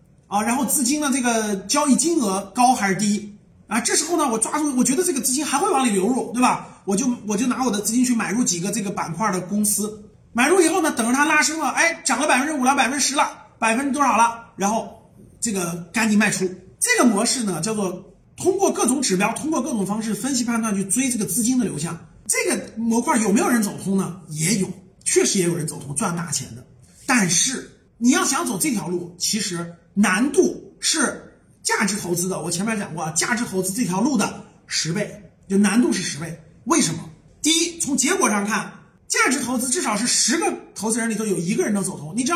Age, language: 30-49, Chinese